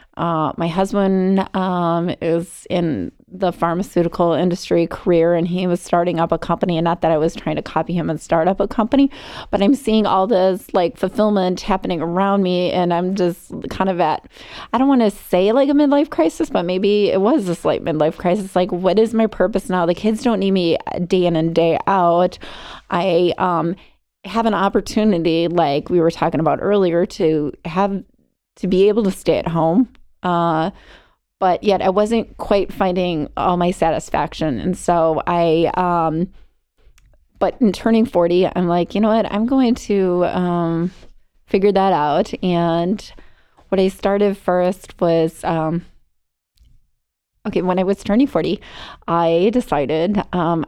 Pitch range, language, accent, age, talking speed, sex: 170-200 Hz, English, American, 30-49, 170 wpm, female